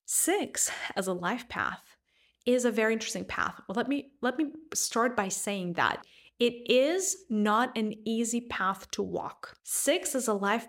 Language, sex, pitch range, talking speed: English, female, 185-245 Hz, 170 wpm